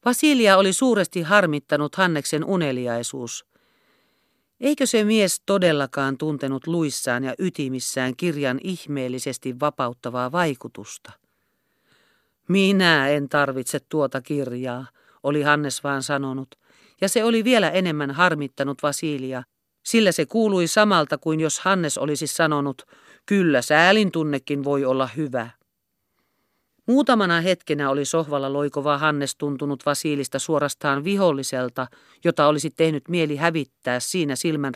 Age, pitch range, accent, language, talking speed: 50-69, 135-185 Hz, native, Finnish, 115 wpm